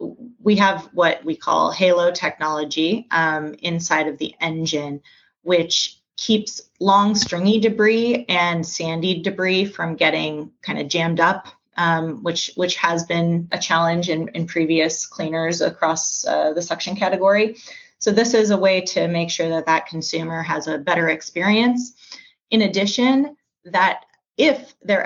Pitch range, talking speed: 165-205 Hz, 150 wpm